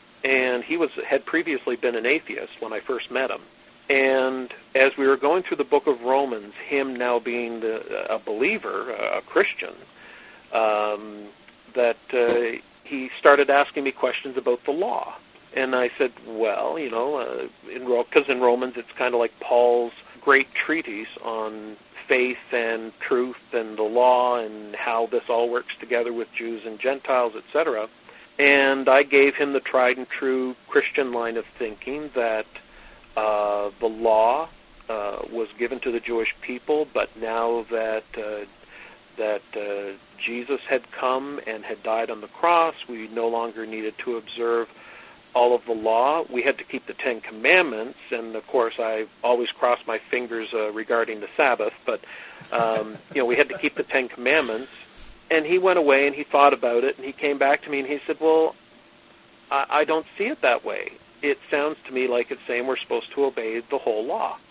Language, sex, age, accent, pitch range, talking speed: English, male, 50-69, American, 115-140 Hz, 180 wpm